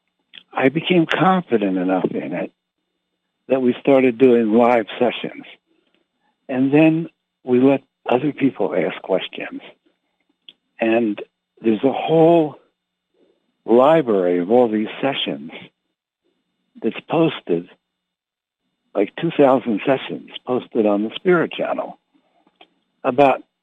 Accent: American